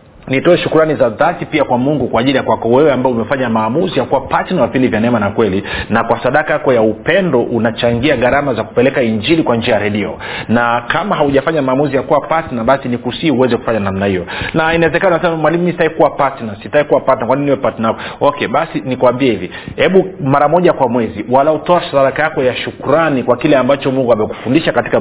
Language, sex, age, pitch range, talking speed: Swahili, male, 40-59, 115-145 Hz, 215 wpm